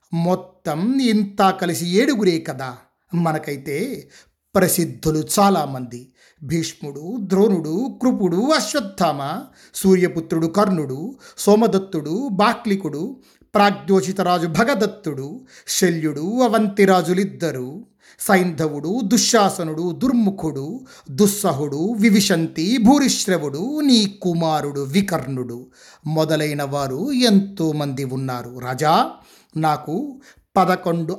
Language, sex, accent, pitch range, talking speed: Telugu, male, native, 150-195 Hz, 70 wpm